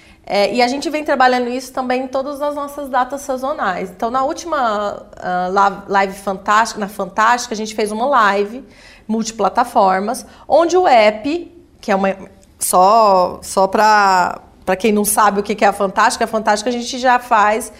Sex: female